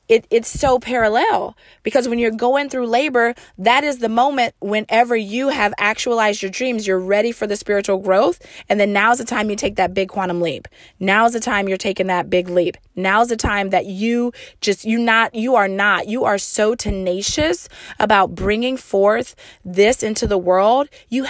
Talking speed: 190 wpm